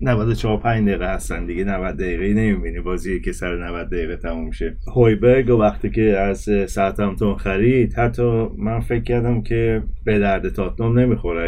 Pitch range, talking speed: 95-120 Hz, 165 wpm